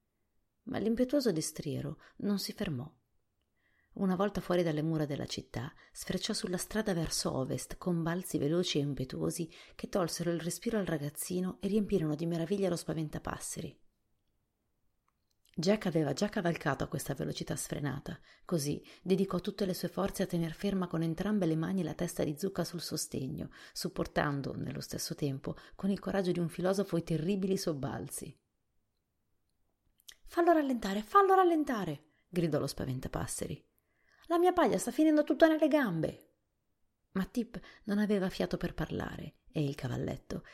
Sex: female